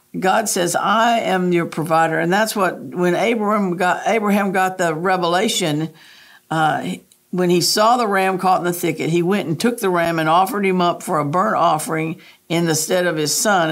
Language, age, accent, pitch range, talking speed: English, 50-69, American, 160-200 Hz, 200 wpm